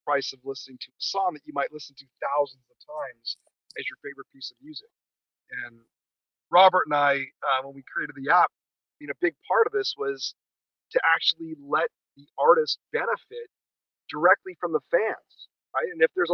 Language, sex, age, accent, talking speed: English, male, 40-59, American, 190 wpm